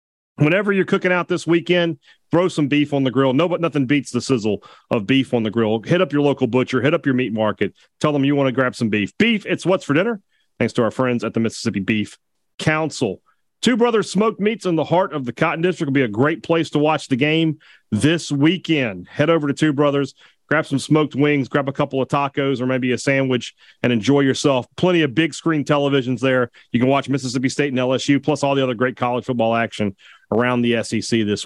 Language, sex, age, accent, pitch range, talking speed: English, male, 40-59, American, 125-155 Hz, 235 wpm